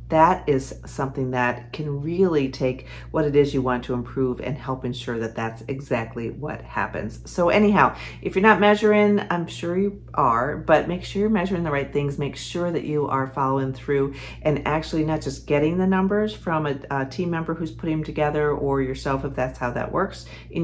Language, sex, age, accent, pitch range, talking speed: English, female, 40-59, American, 130-160 Hz, 205 wpm